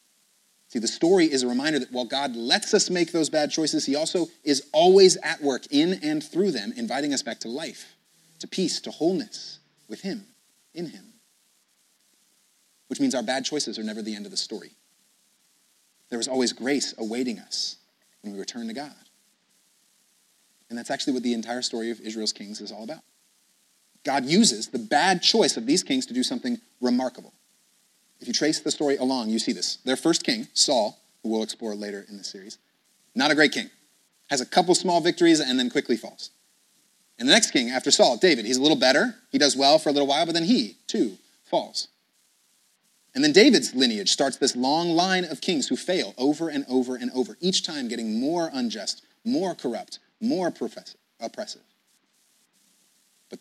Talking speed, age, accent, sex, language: 190 wpm, 30-49, American, male, English